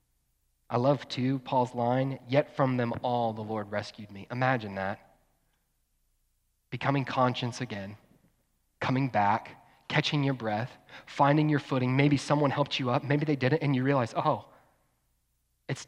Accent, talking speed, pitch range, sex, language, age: American, 145 wpm, 125-180 Hz, male, English, 30-49